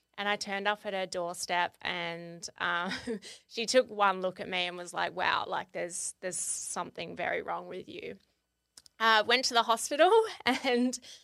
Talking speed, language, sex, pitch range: 175 wpm, English, female, 180-220 Hz